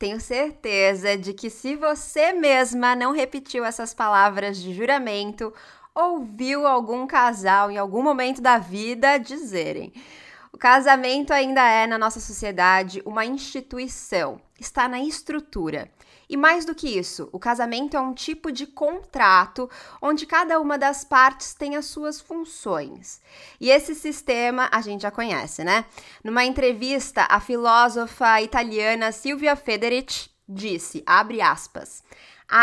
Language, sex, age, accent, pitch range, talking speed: Portuguese, female, 20-39, Brazilian, 205-275 Hz, 135 wpm